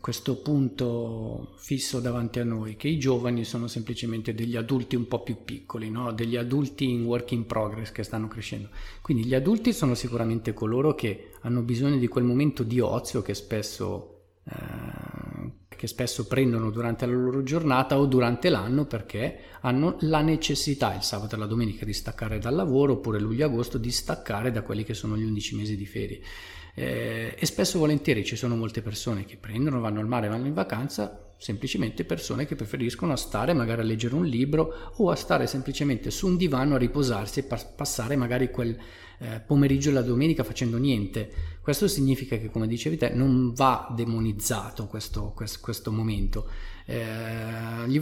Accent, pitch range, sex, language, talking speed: native, 110-135 Hz, male, Italian, 175 wpm